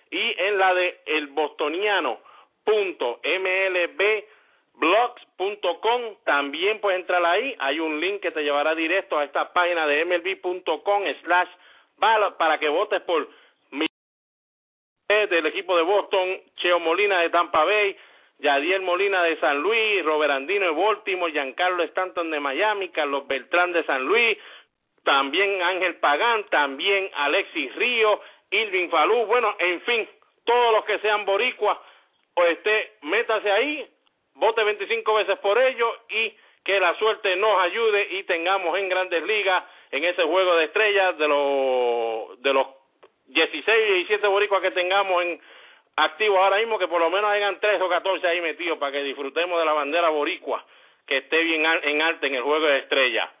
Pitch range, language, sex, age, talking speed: 165-215 Hz, English, male, 50-69, 150 wpm